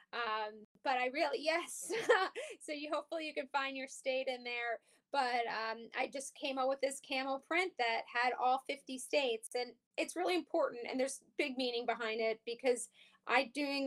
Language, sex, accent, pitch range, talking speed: English, female, American, 230-270 Hz, 185 wpm